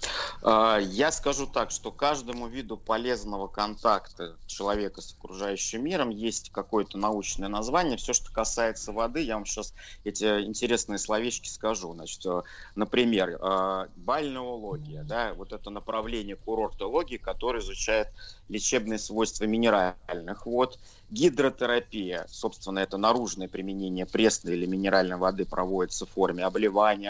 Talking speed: 115 wpm